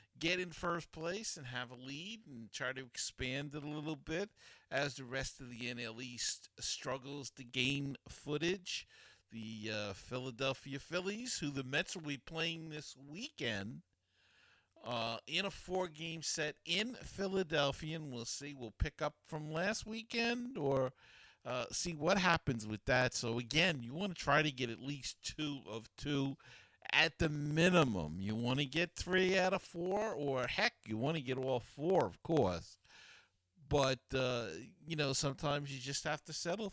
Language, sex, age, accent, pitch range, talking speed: English, male, 50-69, American, 115-165 Hz, 175 wpm